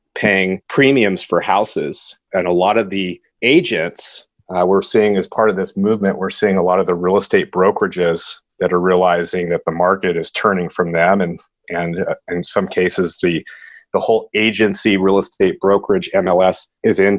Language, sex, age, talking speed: English, male, 30-49, 185 wpm